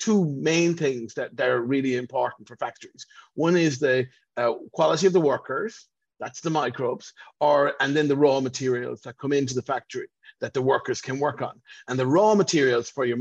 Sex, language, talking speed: male, English, 195 wpm